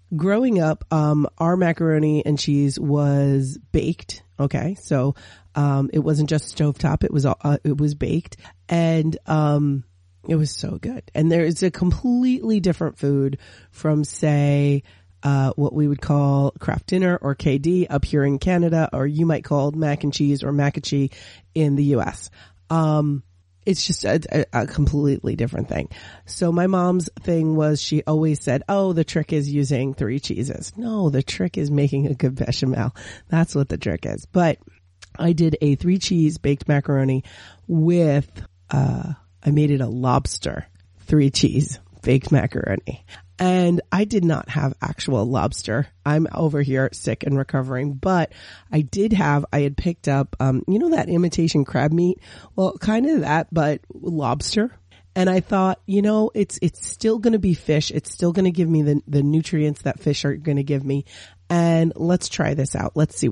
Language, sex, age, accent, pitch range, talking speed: English, female, 30-49, American, 135-165 Hz, 180 wpm